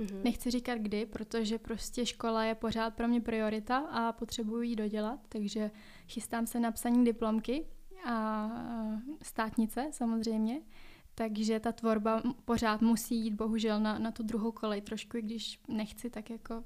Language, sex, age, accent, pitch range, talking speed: Czech, female, 20-39, native, 225-240 Hz, 150 wpm